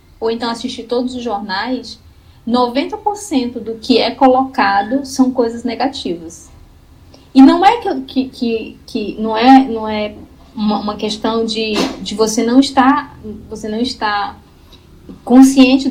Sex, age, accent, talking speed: female, 20-39, Brazilian, 135 wpm